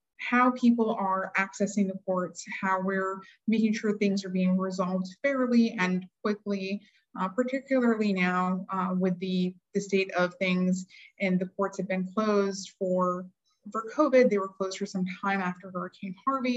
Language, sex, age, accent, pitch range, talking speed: English, female, 20-39, American, 185-230 Hz, 165 wpm